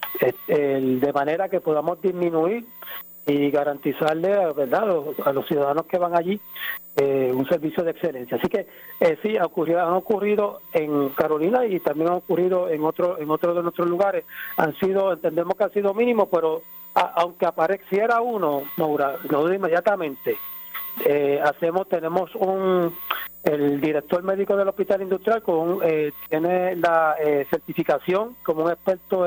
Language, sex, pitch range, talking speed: Spanish, male, 160-190 Hz, 160 wpm